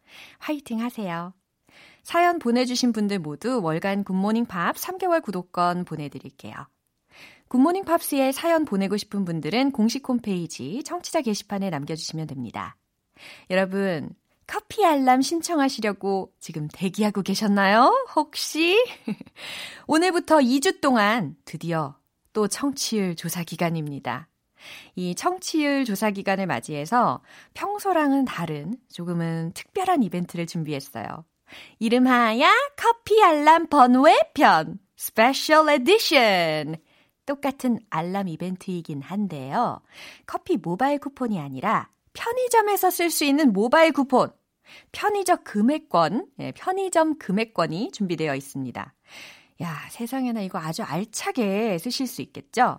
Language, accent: Korean, native